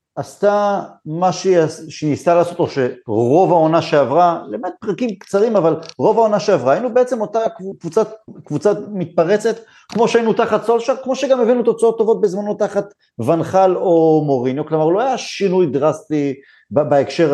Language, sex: Hebrew, male